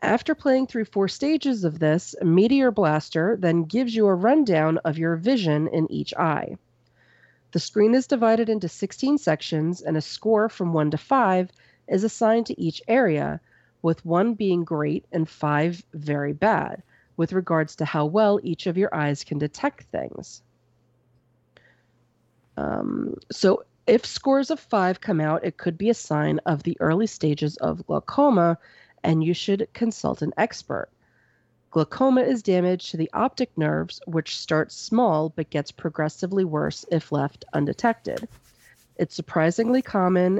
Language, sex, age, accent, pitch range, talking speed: English, female, 40-59, American, 150-215 Hz, 155 wpm